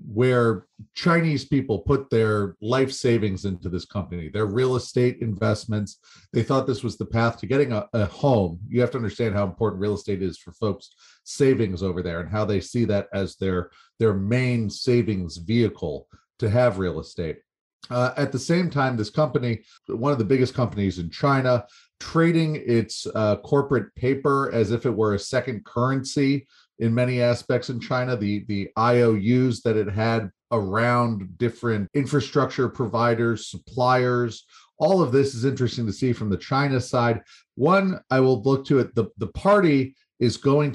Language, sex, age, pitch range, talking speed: English, male, 40-59, 105-130 Hz, 175 wpm